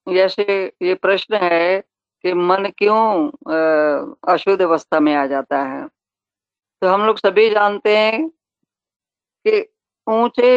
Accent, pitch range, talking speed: native, 160-210 Hz, 120 wpm